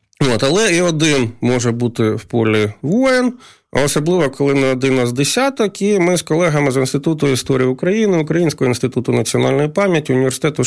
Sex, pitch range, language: male, 130-165 Hz, Ukrainian